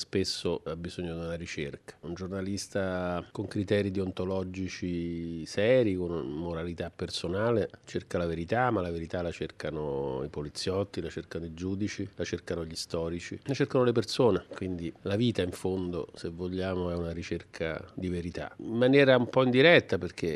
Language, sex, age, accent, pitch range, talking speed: Italian, male, 40-59, native, 85-100 Hz, 160 wpm